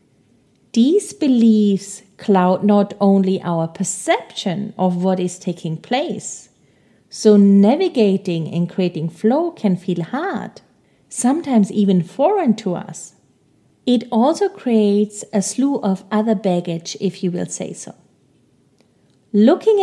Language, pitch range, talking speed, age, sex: English, 185-235 Hz, 120 wpm, 30-49, female